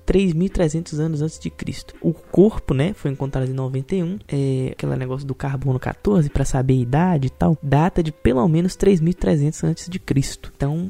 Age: 20-39